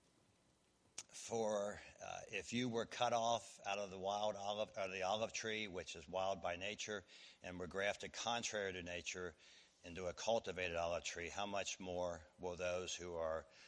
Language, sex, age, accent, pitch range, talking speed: English, male, 60-79, American, 90-105 Hz, 170 wpm